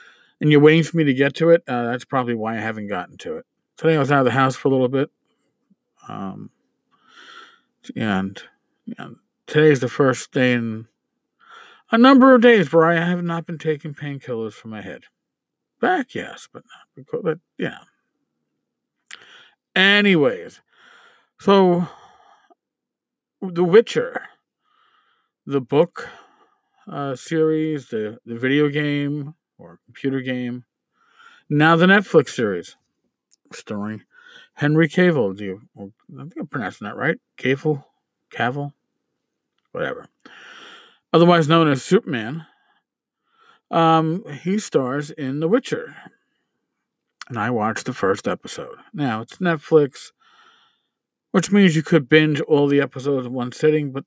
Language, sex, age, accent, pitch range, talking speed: English, male, 50-69, American, 140-230 Hz, 135 wpm